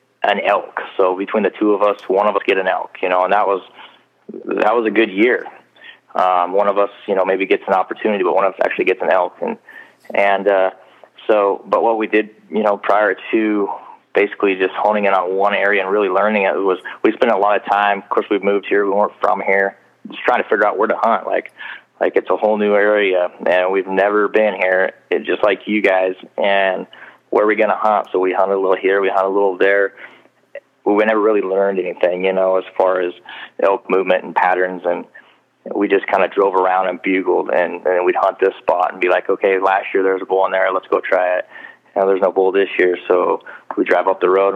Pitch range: 95-105 Hz